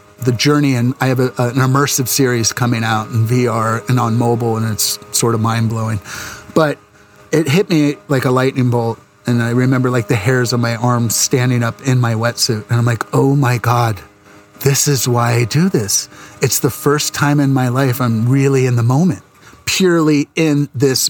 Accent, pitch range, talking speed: American, 120-145 Hz, 195 wpm